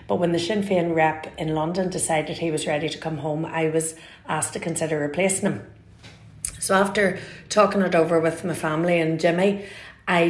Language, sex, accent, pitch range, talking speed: English, female, Irish, 155-175 Hz, 190 wpm